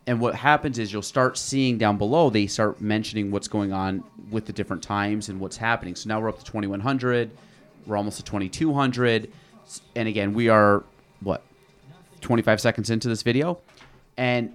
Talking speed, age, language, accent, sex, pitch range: 175 wpm, 30-49, English, American, male, 105-130 Hz